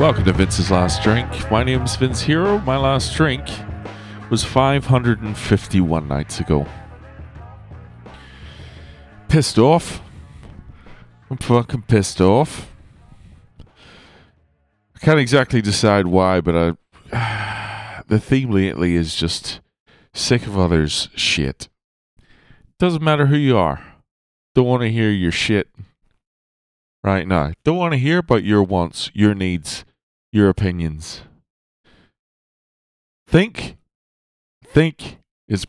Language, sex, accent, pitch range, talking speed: English, male, American, 85-120 Hz, 110 wpm